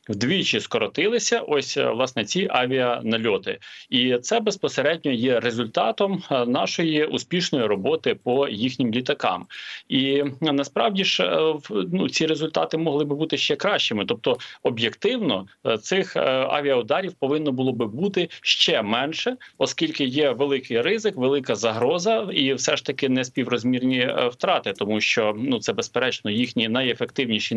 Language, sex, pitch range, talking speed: Ukrainian, male, 125-180 Hz, 125 wpm